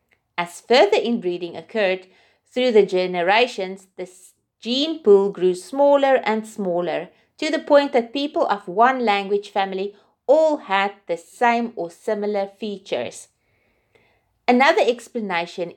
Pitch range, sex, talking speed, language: 175-235 Hz, female, 120 wpm, English